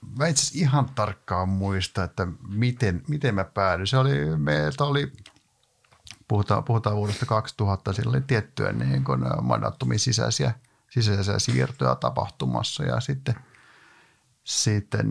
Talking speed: 105 wpm